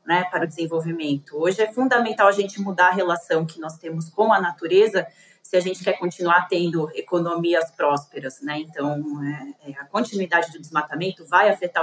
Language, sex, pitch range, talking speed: Portuguese, female, 165-215 Hz, 185 wpm